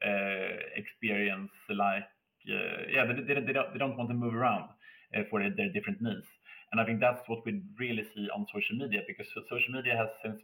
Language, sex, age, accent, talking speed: English, male, 30-49, Norwegian, 200 wpm